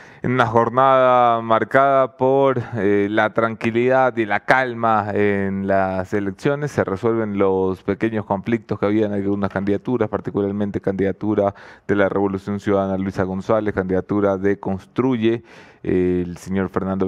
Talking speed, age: 135 wpm, 30-49